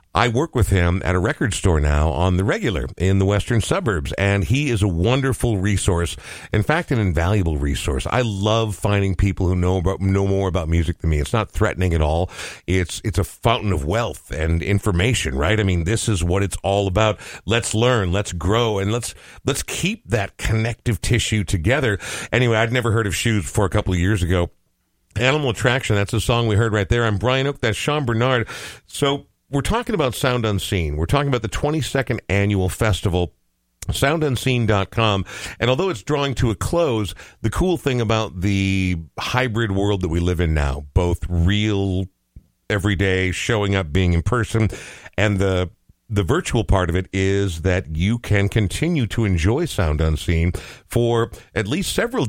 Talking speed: 185 wpm